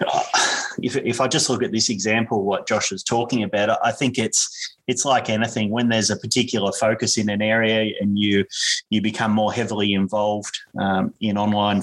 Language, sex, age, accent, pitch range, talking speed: English, male, 20-39, Australian, 100-110 Hz, 190 wpm